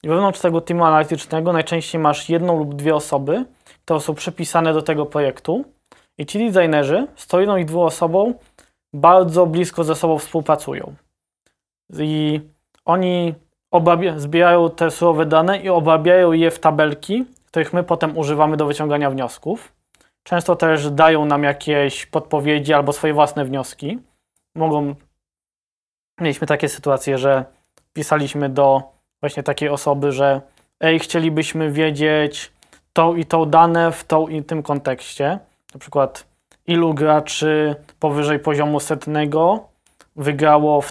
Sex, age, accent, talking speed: male, 20-39, native, 135 wpm